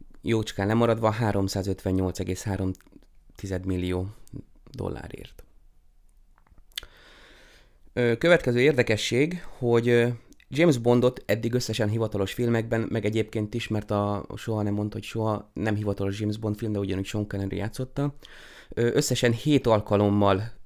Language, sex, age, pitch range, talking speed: Hungarian, male, 20-39, 100-115 Hz, 105 wpm